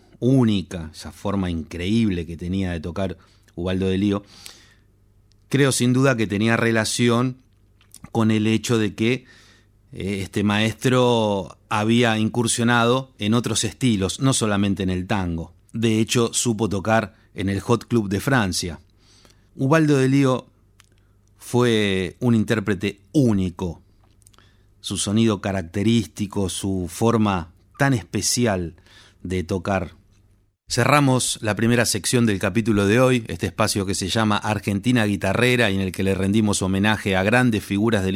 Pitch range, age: 100-115 Hz, 30-49